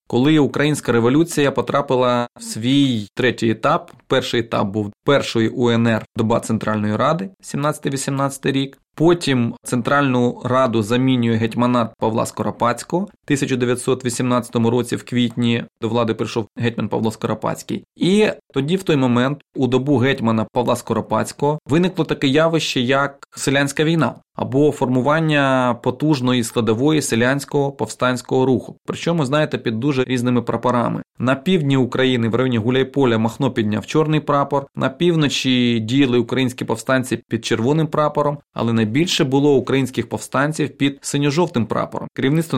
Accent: native